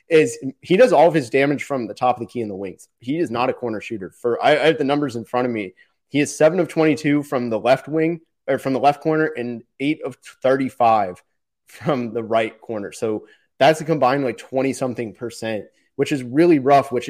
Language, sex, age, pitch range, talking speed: English, male, 20-39, 115-145 Hz, 235 wpm